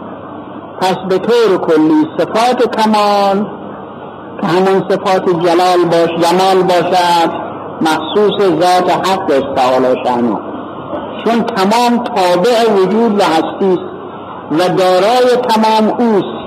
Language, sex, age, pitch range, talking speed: Persian, male, 50-69, 170-240 Hz, 100 wpm